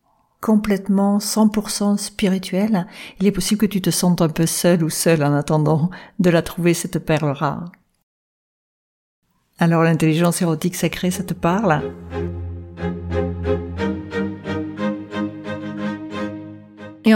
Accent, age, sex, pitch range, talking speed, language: French, 50-69, female, 165-195 Hz, 110 wpm, French